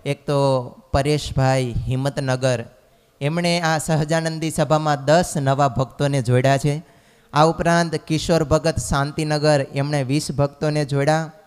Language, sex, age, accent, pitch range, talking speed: Gujarati, male, 20-39, native, 135-155 Hz, 115 wpm